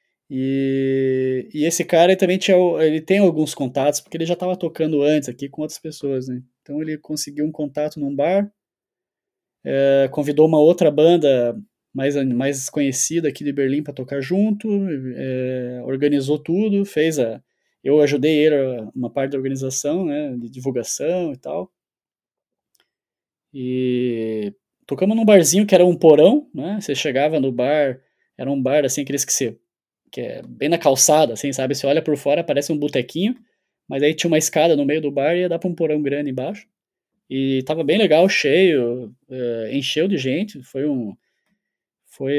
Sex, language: male, Portuguese